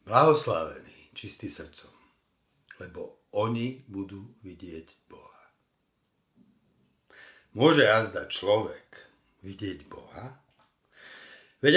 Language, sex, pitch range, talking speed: Slovak, male, 95-125 Hz, 70 wpm